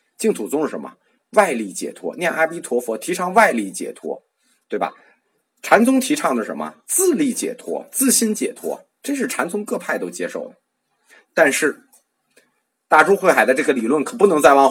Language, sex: Chinese, male